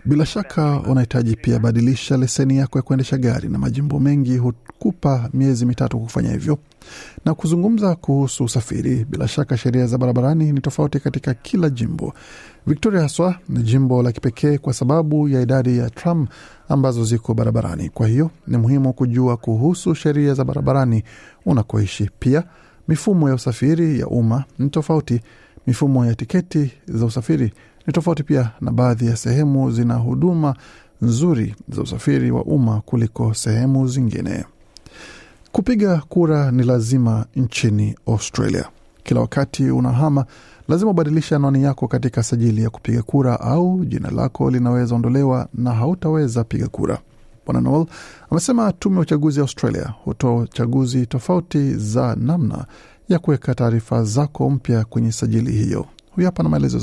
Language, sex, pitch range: Swahili, male, 120-150 Hz